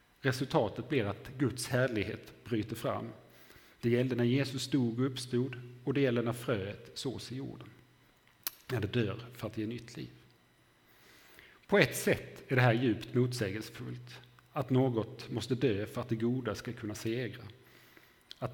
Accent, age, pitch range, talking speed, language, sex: Norwegian, 40-59, 110-125 Hz, 160 wpm, Swedish, male